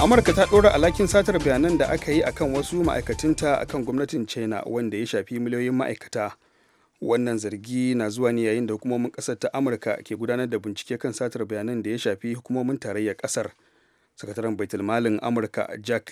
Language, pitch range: English, 110-130 Hz